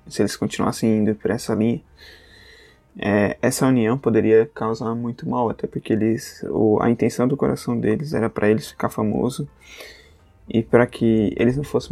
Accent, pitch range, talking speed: Brazilian, 105-120 Hz, 170 wpm